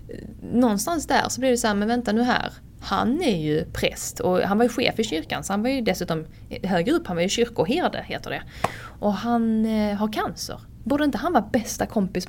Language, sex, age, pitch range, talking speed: Swedish, female, 20-39, 170-235 Hz, 215 wpm